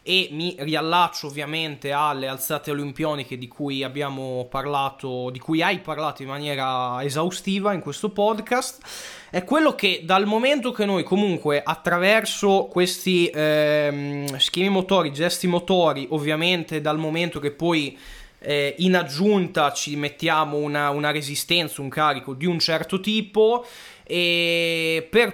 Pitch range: 150-195 Hz